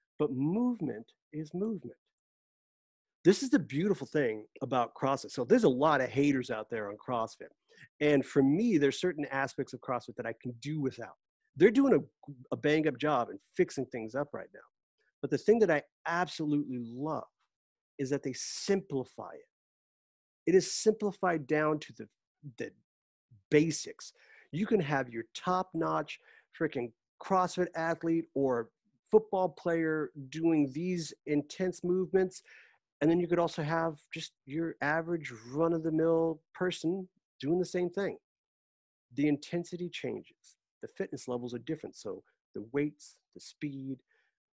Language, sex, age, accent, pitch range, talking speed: English, male, 40-59, American, 135-175 Hz, 150 wpm